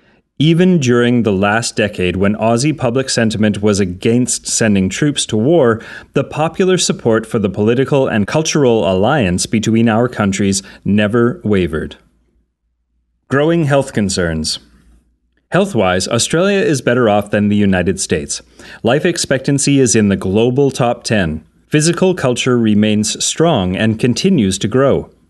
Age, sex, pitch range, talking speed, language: 30-49, male, 100-135 Hz, 135 wpm, English